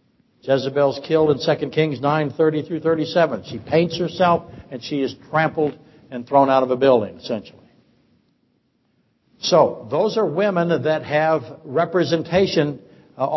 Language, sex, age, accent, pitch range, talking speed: English, male, 60-79, American, 150-200 Hz, 140 wpm